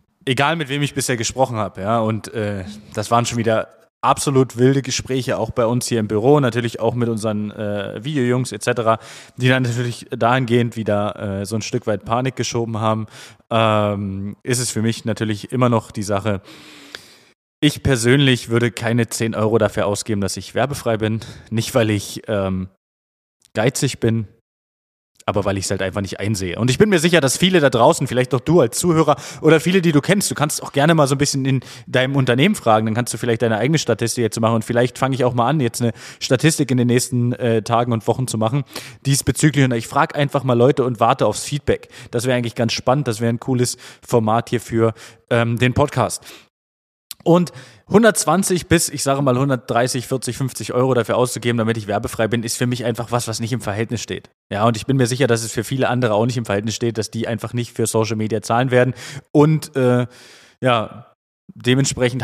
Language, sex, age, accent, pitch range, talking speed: German, male, 20-39, German, 110-130 Hz, 210 wpm